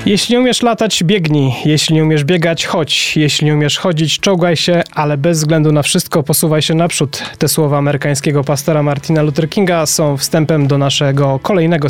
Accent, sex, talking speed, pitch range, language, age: native, male, 180 wpm, 145-175 Hz, Polish, 20-39